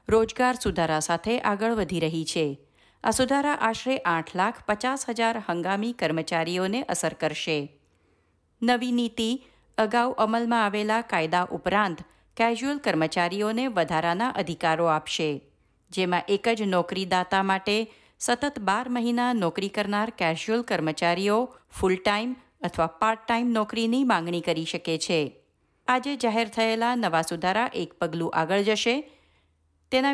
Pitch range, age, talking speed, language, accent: 175-235 Hz, 50-69, 125 wpm, Gujarati, native